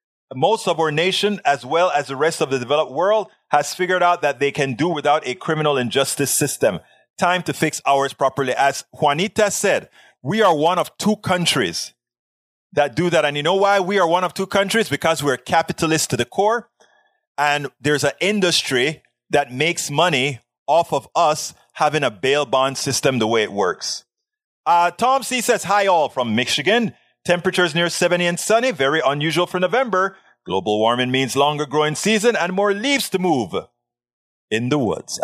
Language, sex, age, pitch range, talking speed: English, male, 30-49, 135-195 Hz, 185 wpm